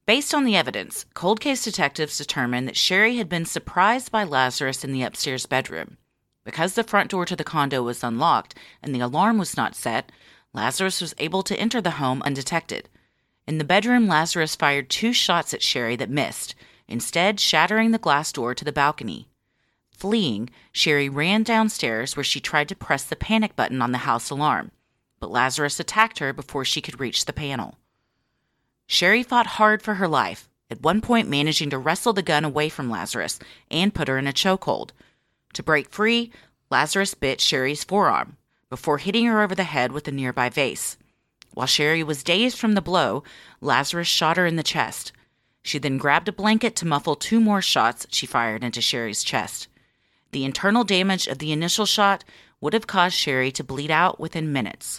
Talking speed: 185 wpm